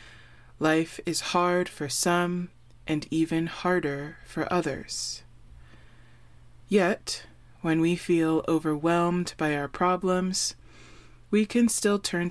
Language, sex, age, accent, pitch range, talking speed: English, female, 20-39, American, 150-195 Hz, 105 wpm